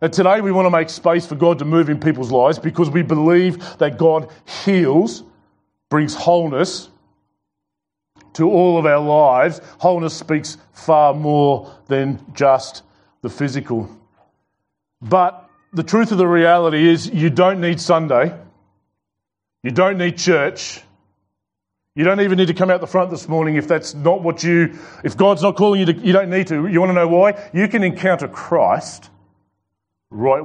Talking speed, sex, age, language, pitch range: 165 wpm, male, 30-49, English, 105-165 Hz